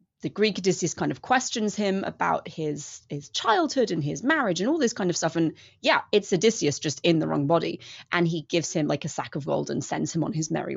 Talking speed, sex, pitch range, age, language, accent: 245 wpm, female, 155-185 Hz, 30-49, English, British